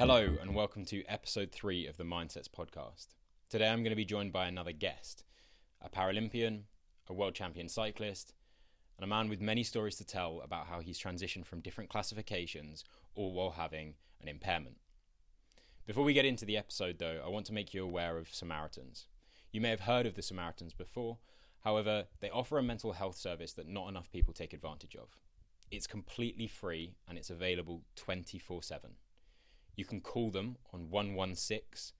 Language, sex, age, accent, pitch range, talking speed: English, male, 10-29, British, 85-105 Hz, 180 wpm